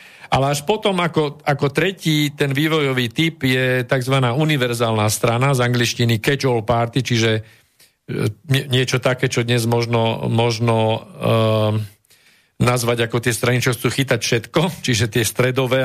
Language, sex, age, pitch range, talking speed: Slovak, male, 50-69, 115-145 Hz, 135 wpm